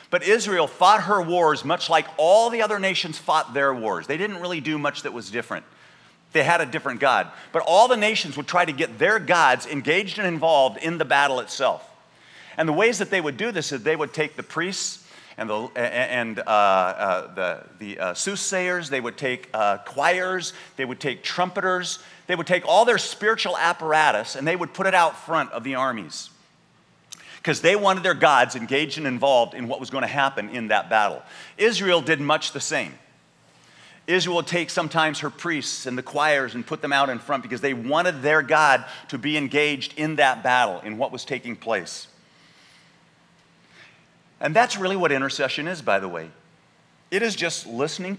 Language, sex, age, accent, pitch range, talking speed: English, male, 50-69, American, 140-185 Hz, 200 wpm